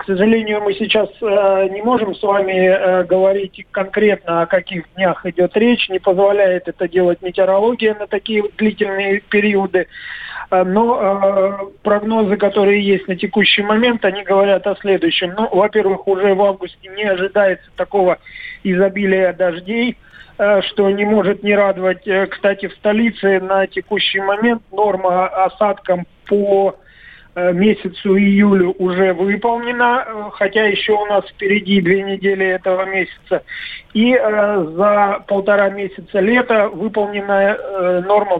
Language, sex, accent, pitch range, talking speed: Russian, male, native, 190-210 Hz, 125 wpm